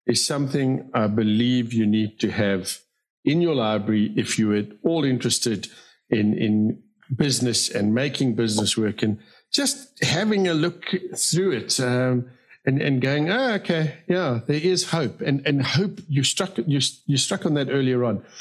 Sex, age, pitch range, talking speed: male, 50-69, 115-150 Hz, 175 wpm